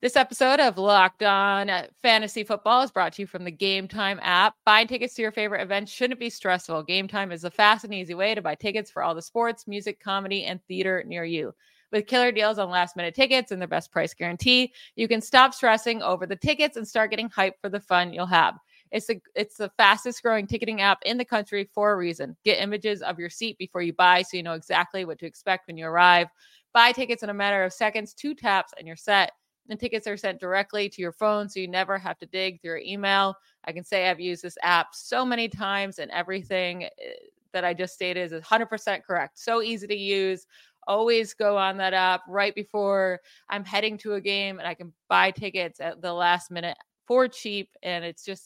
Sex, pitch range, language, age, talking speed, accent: female, 180-215 Hz, English, 30-49, 225 wpm, American